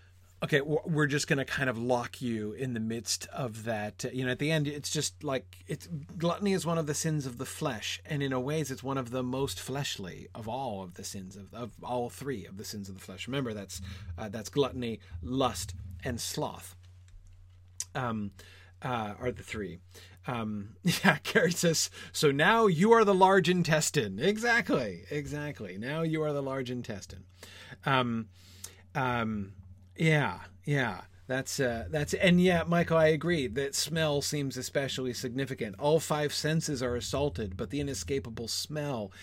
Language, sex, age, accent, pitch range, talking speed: English, male, 30-49, American, 100-145 Hz, 175 wpm